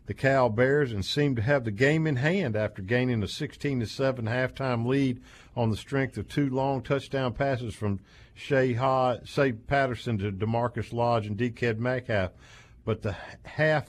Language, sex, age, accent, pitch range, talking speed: English, male, 50-69, American, 105-135 Hz, 160 wpm